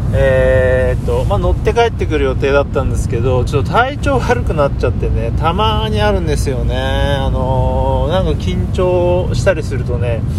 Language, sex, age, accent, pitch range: Japanese, male, 30-49, native, 95-120 Hz